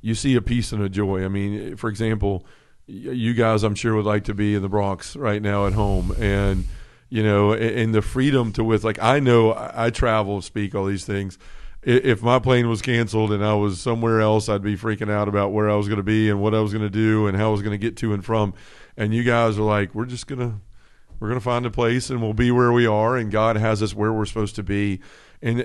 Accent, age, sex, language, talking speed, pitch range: American, 40-59, male, English, 260 wpm, 105-115 Hz